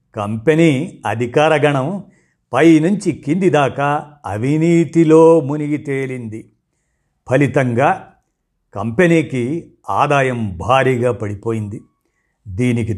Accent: native